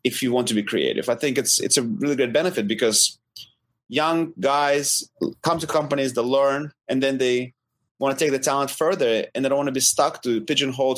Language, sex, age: English, male, 30-49